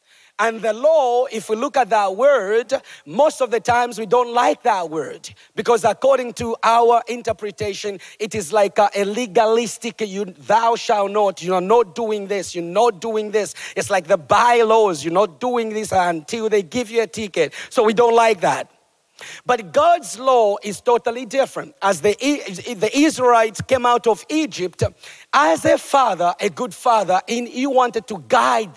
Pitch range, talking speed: 205-250 Hz, 175 wpm